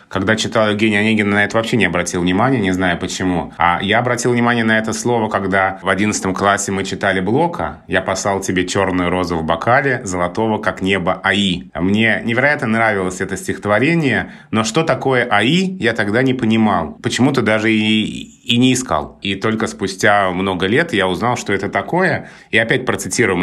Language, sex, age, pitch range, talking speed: Russian, male, 30-49, 95-130 Hz, 180 wpm